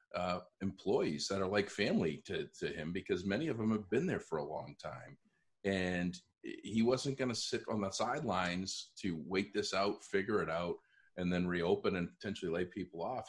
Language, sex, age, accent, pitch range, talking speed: English, male, 40-59, American, 90-110 Hz, 200 wpm